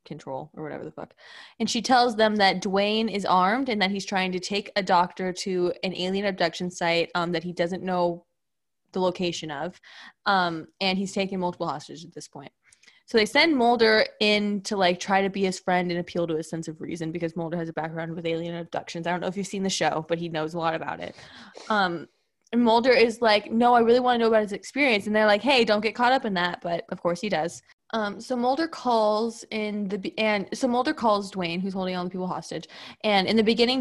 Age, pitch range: 20-39, 180-220 Hz